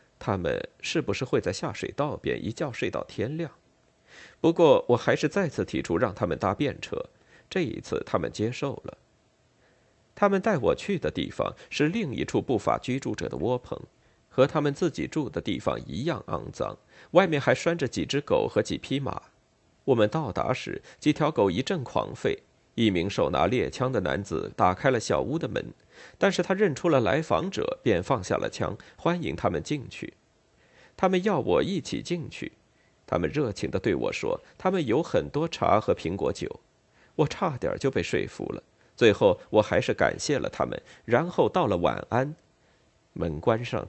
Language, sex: Chinese, male